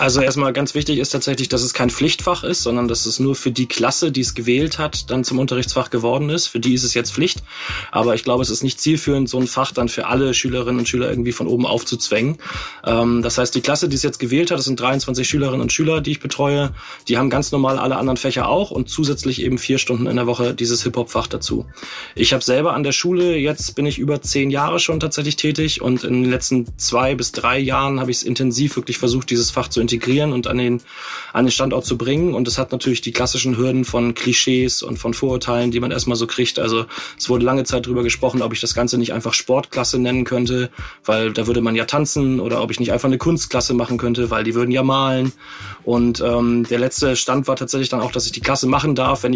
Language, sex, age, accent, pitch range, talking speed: German, male, 30-49, German, 120-135 Hz, 245 wpm